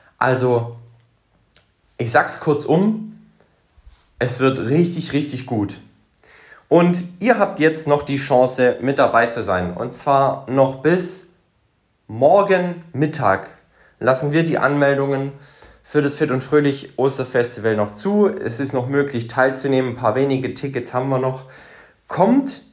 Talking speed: 135 wpm